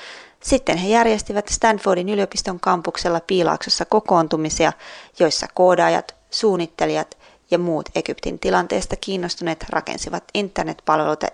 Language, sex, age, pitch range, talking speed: Finnish, female, 20-39, 165-215 Hz, 95 wpm